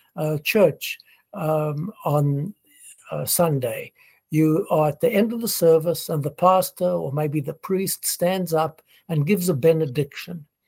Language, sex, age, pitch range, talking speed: English, male, 60-79, 150-185 Hz, 150 wpm